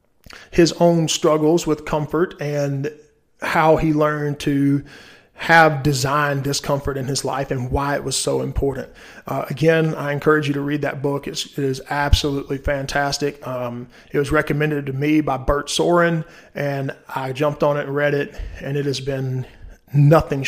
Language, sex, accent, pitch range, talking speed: English, male, American, 140-155 Hz, 165 wpm